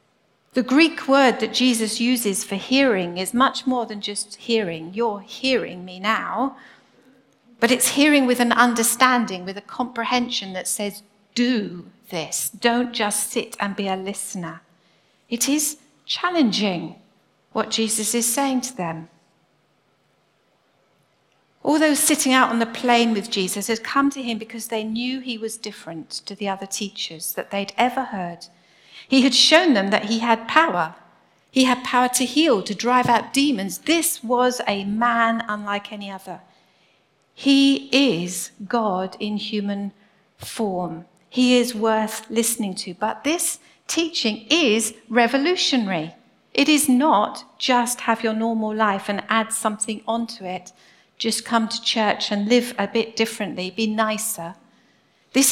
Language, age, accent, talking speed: English, 50-69, British, 150 wpm